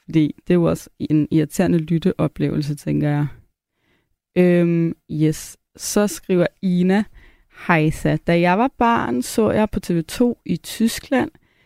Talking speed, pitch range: 125 wpm, 170-245 Hz